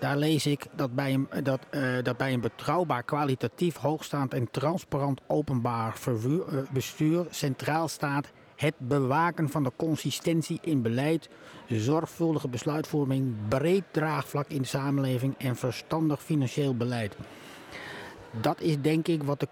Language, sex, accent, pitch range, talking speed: Dutch, male, Dutch, 120-150 Hz, 130 wpm